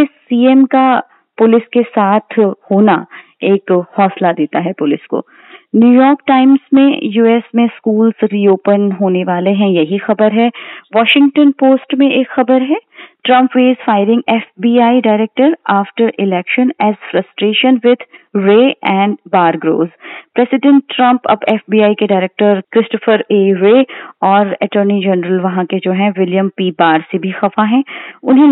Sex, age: female, 30-49